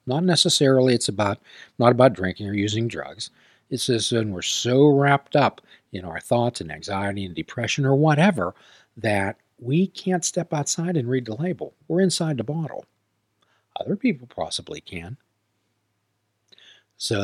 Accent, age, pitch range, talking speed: American, 50-69, 100-135 Hz, 155 wpm